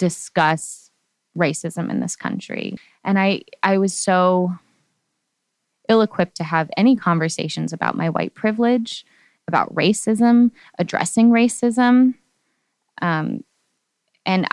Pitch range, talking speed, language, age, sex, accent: 170-200 Hz, 105 wpm, English, 20-39, female, American